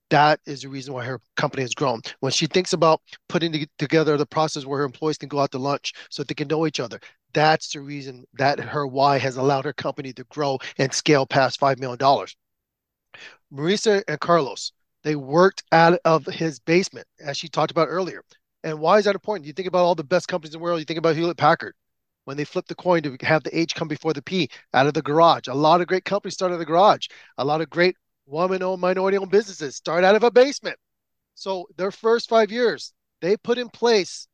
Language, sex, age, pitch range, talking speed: English, male, 30-49, 150-205 Hz, 230 wpm